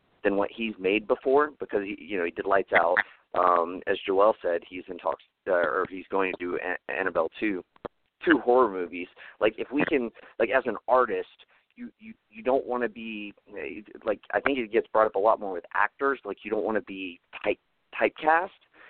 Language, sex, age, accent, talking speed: English, male, 30-49, American, 215 wpm